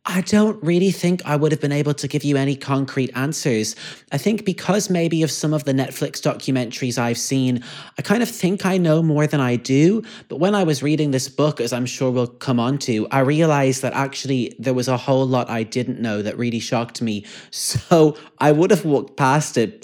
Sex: male